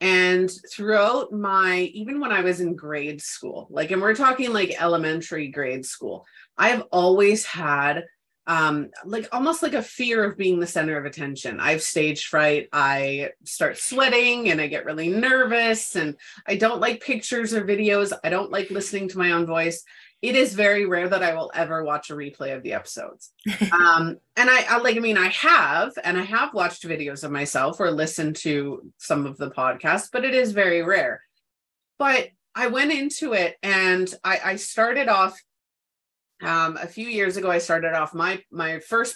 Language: English